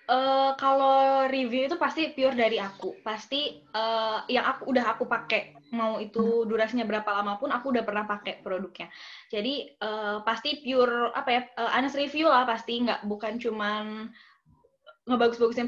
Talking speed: 155 wpm